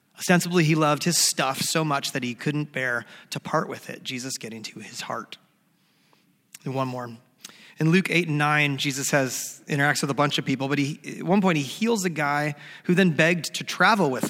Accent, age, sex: American, 30-49, male